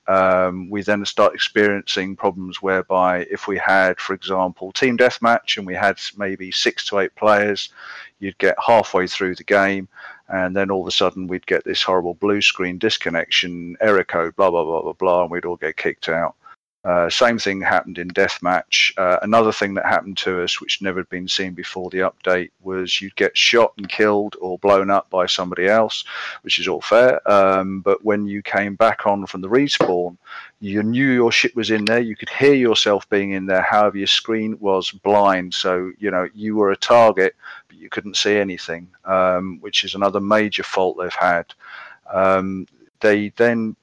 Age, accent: 40-59, British